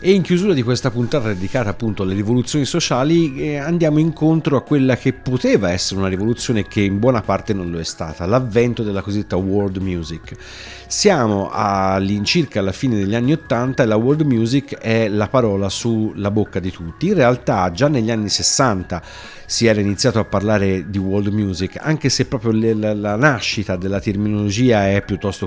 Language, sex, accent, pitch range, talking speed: Italian, male, native, 95-120 Hz, 175 wpm